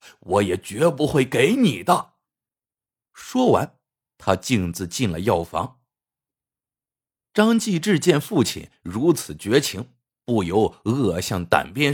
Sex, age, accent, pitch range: male, 50-69, native, 110-175 Hz